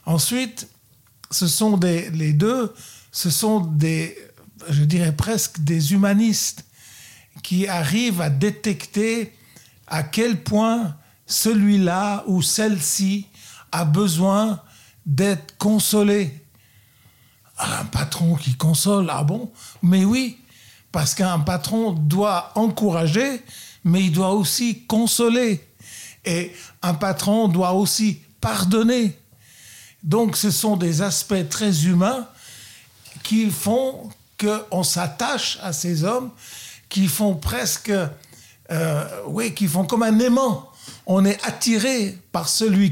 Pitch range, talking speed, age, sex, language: 150-215 Hz, 115 wpm, 50-69, male, French